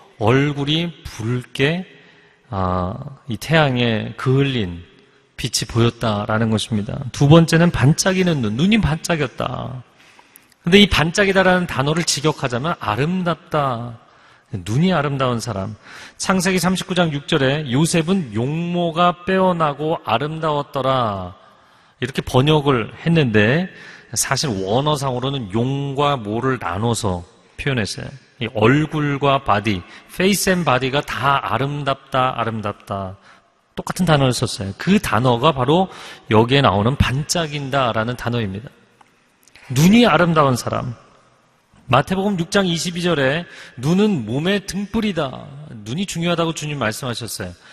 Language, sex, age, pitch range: Korean, male, 40-59, 115-170 Hz